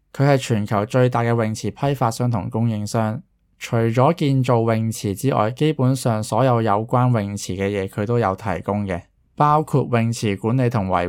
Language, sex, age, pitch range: Chinese, male, 20-39, 105-130 Hz